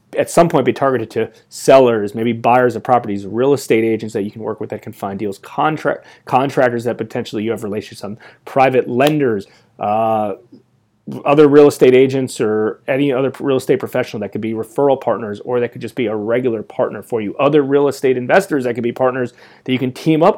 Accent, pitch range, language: American, 115-150 Hz, English